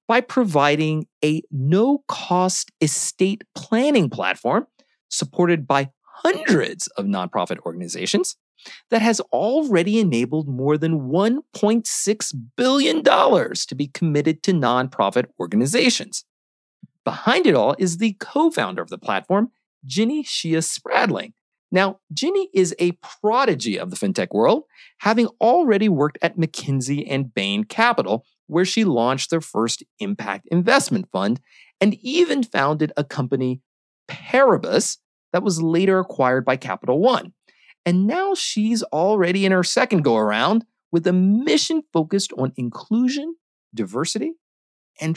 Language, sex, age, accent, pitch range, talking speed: English, male, 40-59, American, 145-225 Hz, 125 wpm